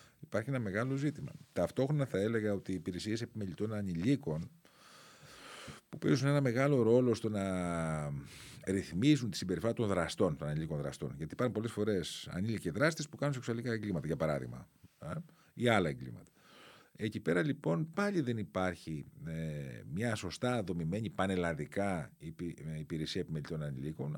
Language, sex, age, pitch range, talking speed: Greek, male, 40-59, 80-120 Hz, 135 wpm